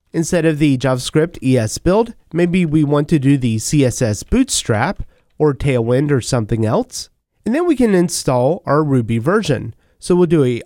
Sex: male